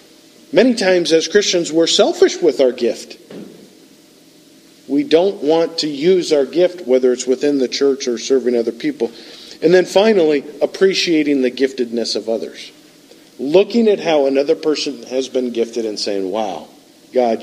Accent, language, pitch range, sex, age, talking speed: American, English, 115-160 Hz, male, 50-69, 155 wpm